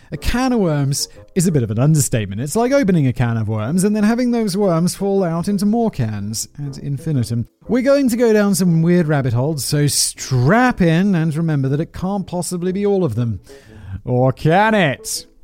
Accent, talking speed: British, 210 wpm